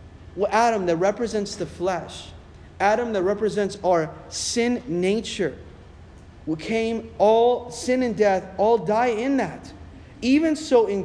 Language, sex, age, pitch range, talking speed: English, male, 30-49, 185-245 Hz, 135 wpm